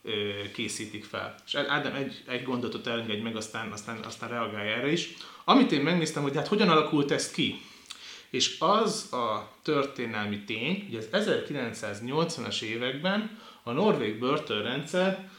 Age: 30-49